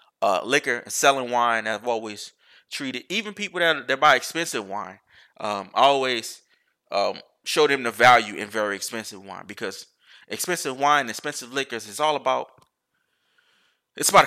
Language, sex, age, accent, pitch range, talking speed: English, male, 20-39, American, 105-130 Hz, 150 wpm